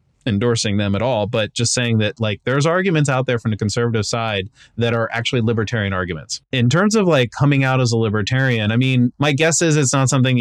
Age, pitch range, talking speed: 20-39, 105-130 Hz, 225 wpm